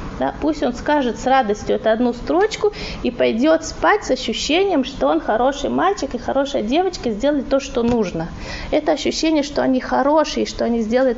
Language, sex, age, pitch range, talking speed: Russian, female, 20-39, 230-285 Hz, 175 wpm